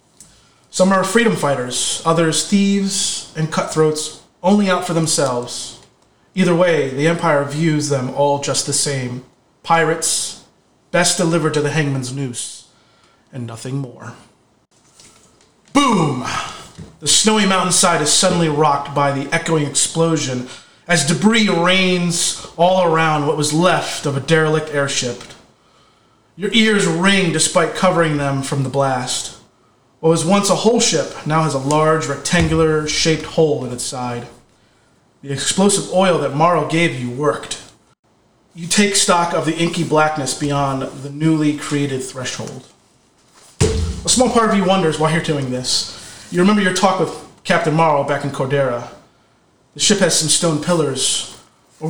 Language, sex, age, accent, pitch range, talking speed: English, male, 30-49, American, 135-175 Hz, 145 wpm